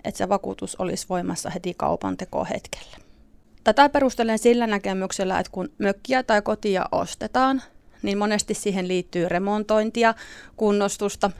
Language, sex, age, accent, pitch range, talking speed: Finnish, female, 30-49, native, 190-235 Hz, 125 wpm